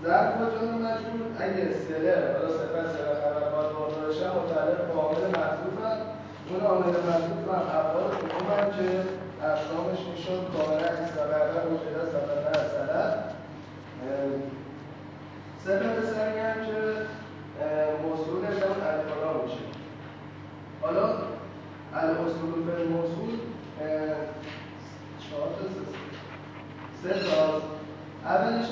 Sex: male